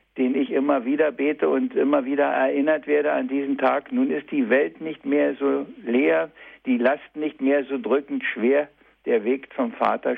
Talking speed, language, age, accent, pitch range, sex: 190 wpm, German, 60-79, German, 135-160 Hz, male